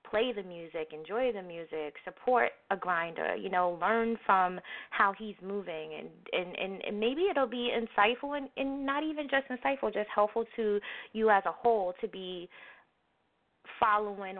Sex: female